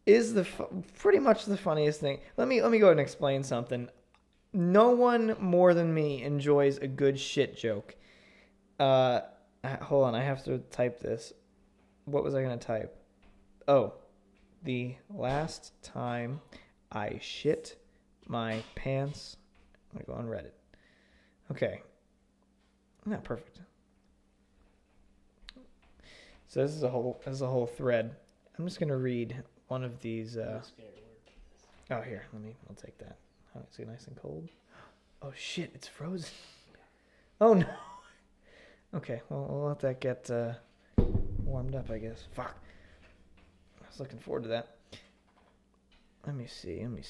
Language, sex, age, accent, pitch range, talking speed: English, male, 20-39, American, 115-150 Hz, 145 wpm